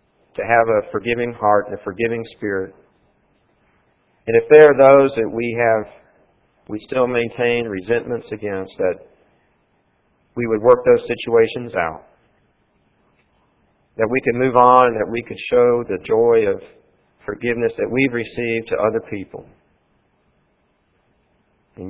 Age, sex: 40-59, male